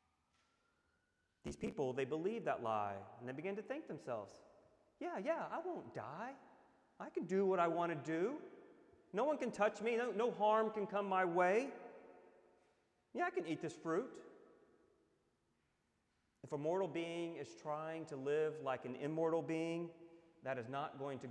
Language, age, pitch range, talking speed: English, 30-49, 115-170 Hz, 170 wpm